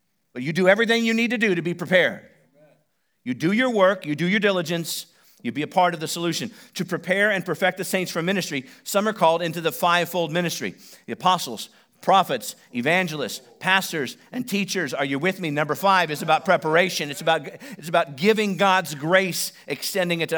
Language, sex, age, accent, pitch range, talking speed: English, male, 50-69, American, 155-200 Hz, 195 wpm